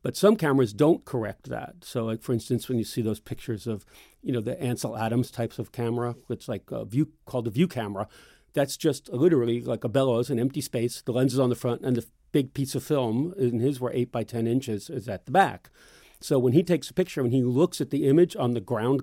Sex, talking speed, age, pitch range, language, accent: male, 250 wpm, 40-59, 115-135 Hz, English, American